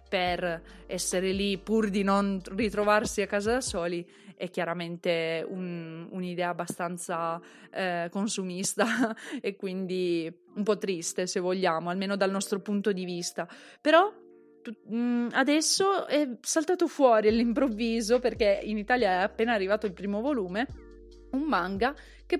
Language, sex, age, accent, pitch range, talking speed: Italian, female, 20-39, native, 185-235 Hz, 130 wpm